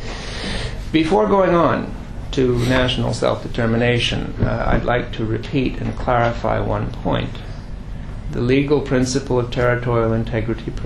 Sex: male